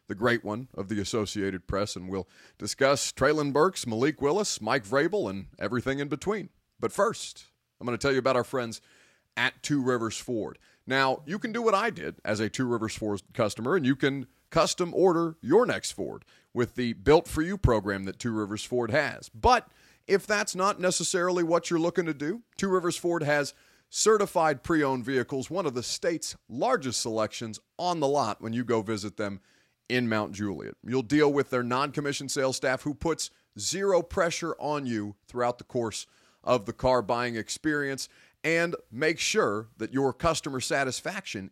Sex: male